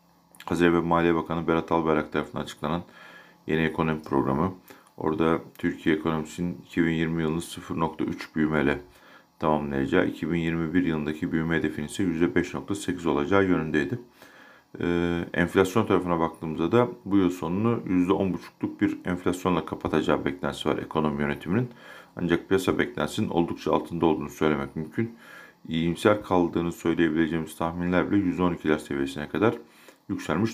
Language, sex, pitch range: Turkish, male, 80-90 Hz